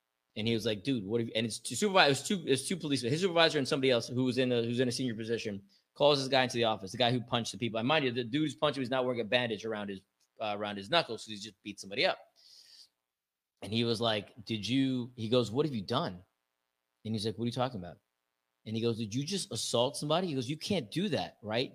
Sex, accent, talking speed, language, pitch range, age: male, American, 285 wpm, English, 110-155 Hz, 20-39